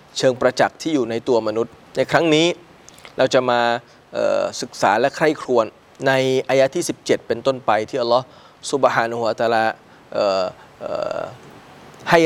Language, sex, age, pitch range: Thai, male, 20-39, 125-160 Hz